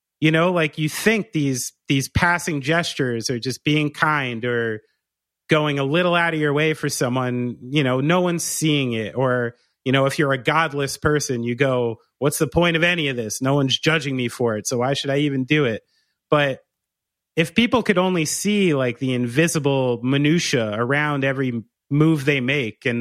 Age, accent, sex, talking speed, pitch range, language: 30-49, American, male, 195 wpm, 125-155 Hz, English